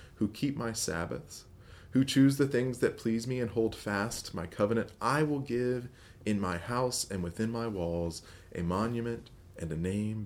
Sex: male